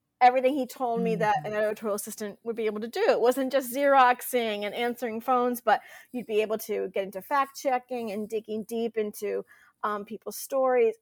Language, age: English, 40-59